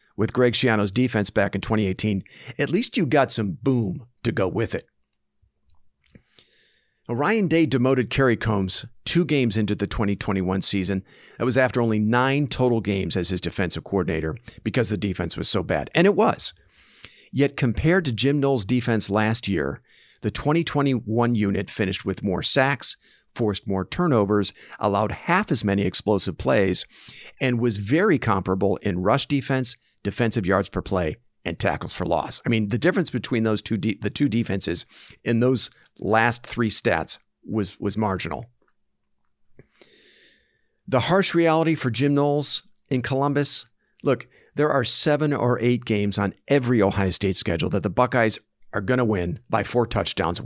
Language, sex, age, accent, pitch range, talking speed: English, male, 50-69, American, 100-130 Hz, 160 wpm